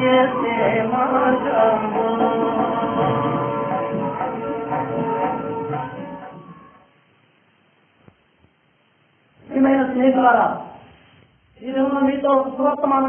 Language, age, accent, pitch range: Hindi, 40-59, native, 265-330 Hz